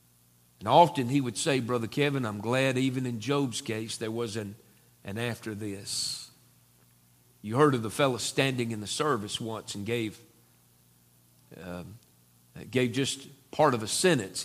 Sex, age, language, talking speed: male, 50-69, English, 160 wpm